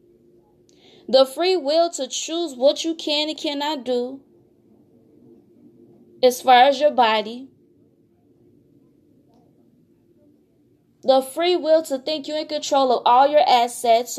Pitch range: 225-295 Hz